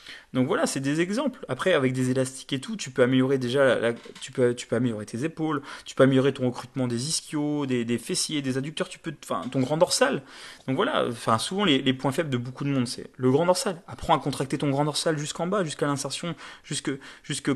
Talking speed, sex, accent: 240 wpm, male, French